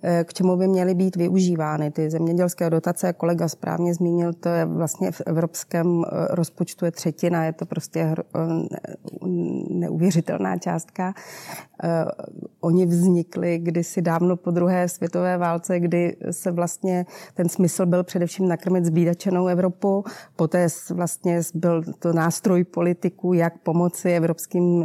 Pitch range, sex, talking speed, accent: 165-180 Hz, female, 125 wpm, native